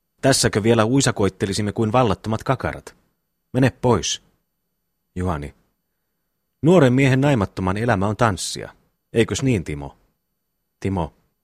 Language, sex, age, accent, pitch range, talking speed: Finnish, male, 30-49, native, 95-135 Hz, 100 wpm